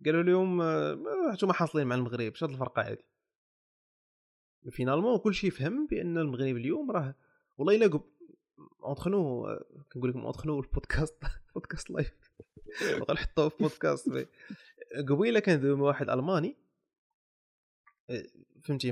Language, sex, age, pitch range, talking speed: Arabic, male, 20-39, 125-190 Hz, 115 wpm